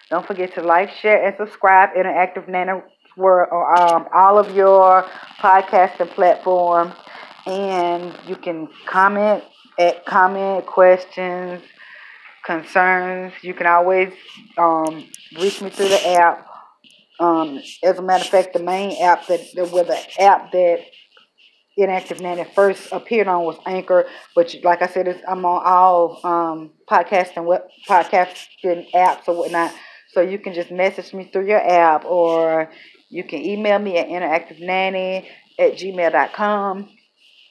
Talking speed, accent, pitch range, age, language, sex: 140 wpm, American, 175-195 Hz, 20-39, English, female